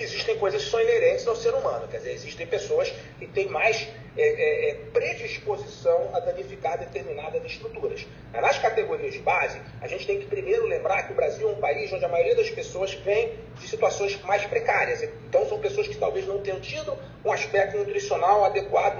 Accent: Brazilian